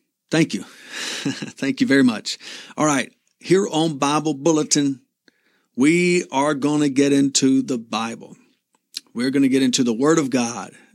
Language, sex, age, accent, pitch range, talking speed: English, male, 50-69, American, 135-185 Hz, 160 wpm